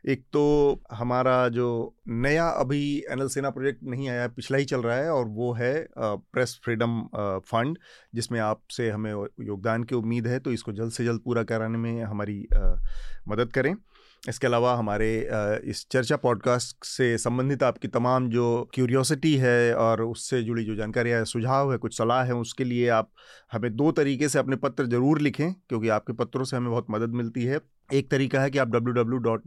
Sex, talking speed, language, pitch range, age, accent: male, 185 wpm, Hindi, 115-135 Hz, 30-49, native